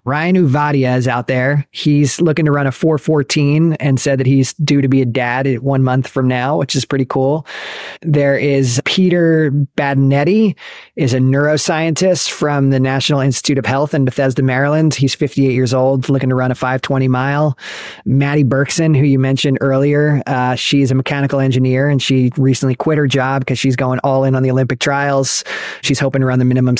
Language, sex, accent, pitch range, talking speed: English, male, American, 130-145 Hz, 195 wpm